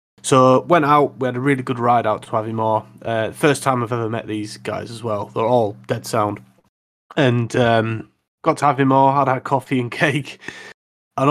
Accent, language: British, English